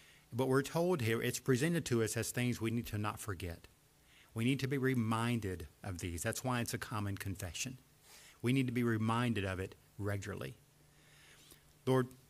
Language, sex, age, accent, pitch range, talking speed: English, male, 50-69, American, 100-120 Hz, 180 wpm